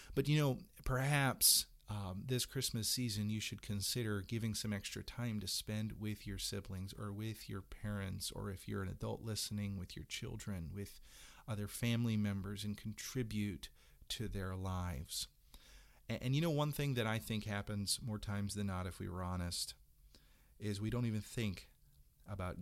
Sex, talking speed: male, 175 wpm